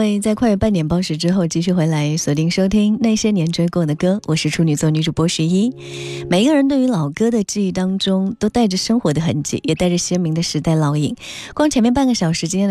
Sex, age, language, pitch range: female, 20-39, Chinese, 155-200 Hz